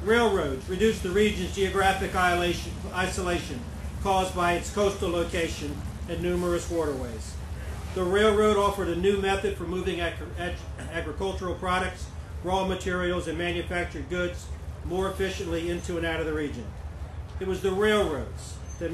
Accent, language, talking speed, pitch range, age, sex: American, English, 135 wpm, 145-190 Hz, 40-59, male